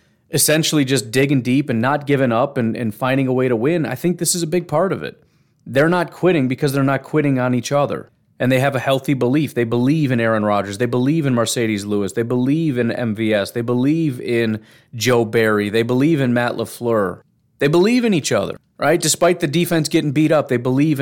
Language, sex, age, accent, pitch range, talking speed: English, male, 30-49, American, 120-140 Hz, 225 wpm